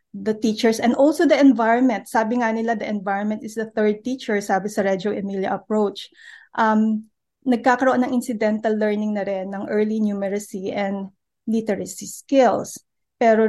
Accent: native